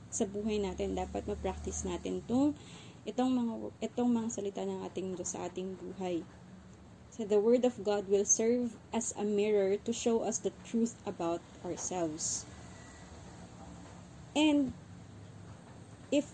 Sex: female